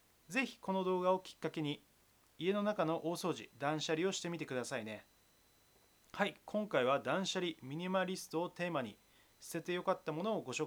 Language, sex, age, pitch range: Japanese, male, 30-49, 150-195 Hz